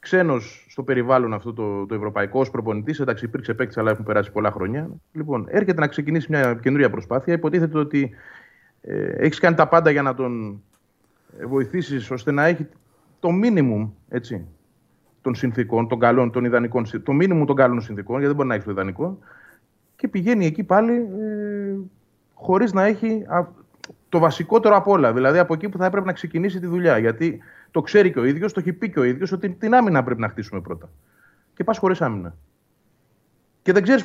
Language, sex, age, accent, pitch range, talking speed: Greek, male, 30-49, native, 120-185 Hz, 185 wpm